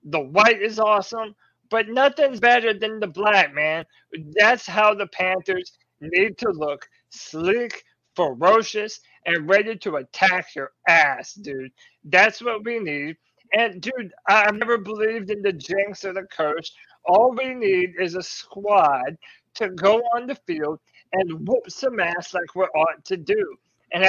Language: English